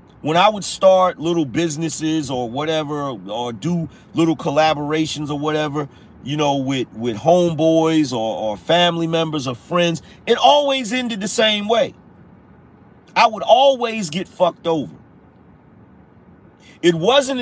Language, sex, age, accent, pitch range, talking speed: English, male, 40-59, American, 155-210 Hz, 135 wpm